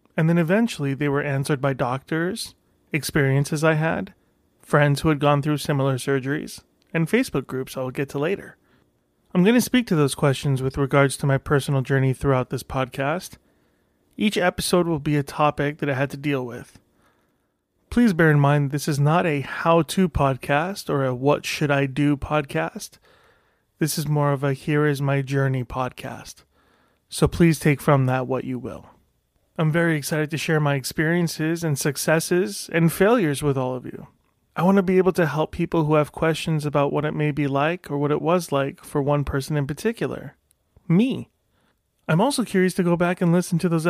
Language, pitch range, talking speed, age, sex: English, 140-170 Hz, 185 wpm, 30-49, male